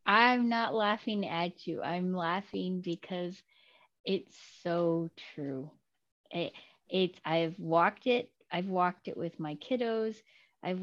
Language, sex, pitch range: English, female, 180-235 Hz